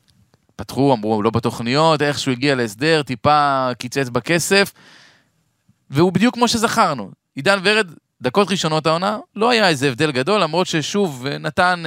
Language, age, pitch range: Hebrew, 20-39, 125-180 Hz